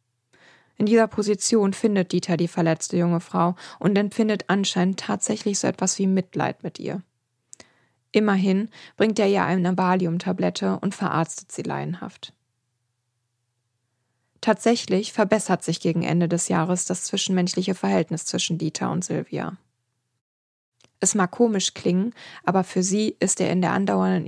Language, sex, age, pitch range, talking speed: English, female, 20-39, 125-195 Hz, 135 wpm